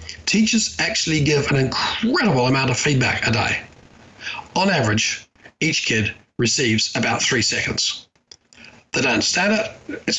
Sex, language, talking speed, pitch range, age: male, English, 135 wpm, 125-165 Hz, 40-59